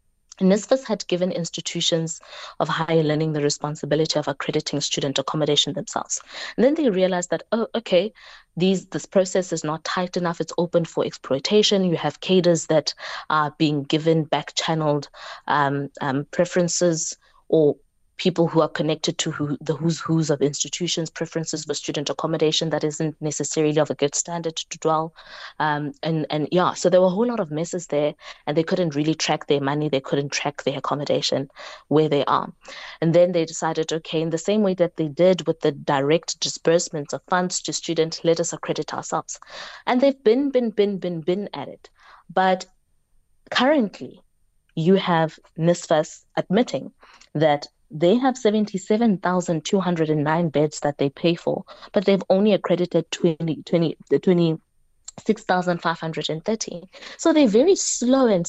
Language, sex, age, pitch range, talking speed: English, female, 20-39, 155-190 Hz, 170 wpm